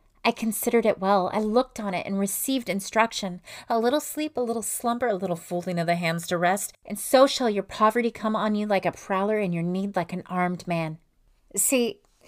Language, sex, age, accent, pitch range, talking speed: English, female, 30-49, American, 200-265 Hz, 215 wpm